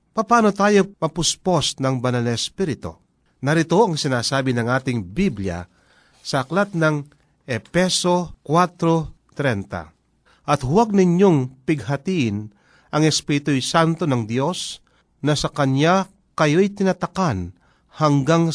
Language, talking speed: Filipino, 105 wpm